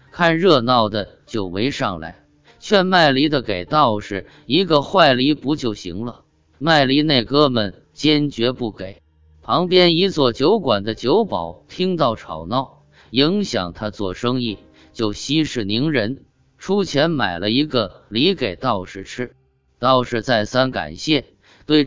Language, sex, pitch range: Chinese, male, 105-145 Hz